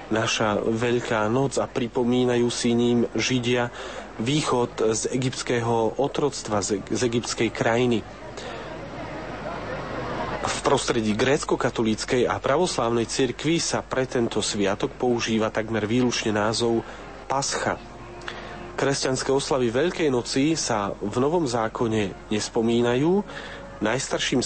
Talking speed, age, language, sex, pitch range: 105 wpm, 40-59, Slovak, male, 115-135 Hz